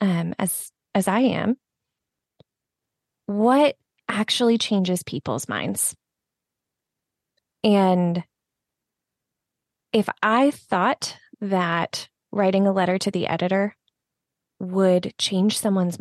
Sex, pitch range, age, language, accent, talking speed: female, 185-215 Hz, 20-39, English, American, 90 wpm